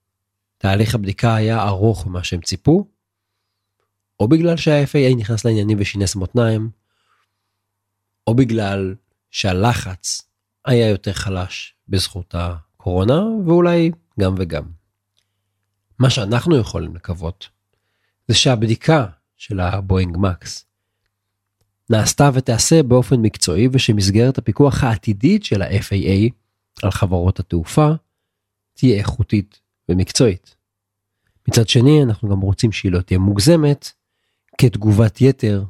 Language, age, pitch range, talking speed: Hebrew, 40-59, 95-115 Hz, 100 wpm